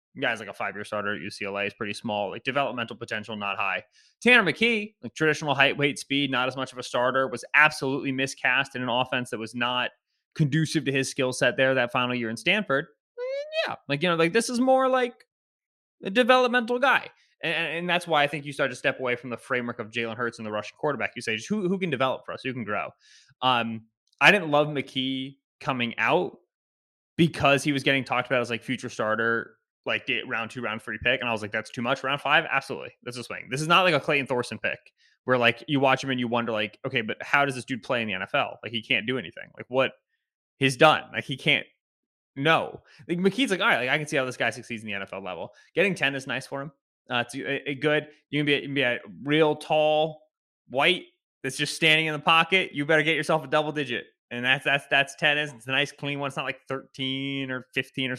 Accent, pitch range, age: American, 120-155 Hz, 20-39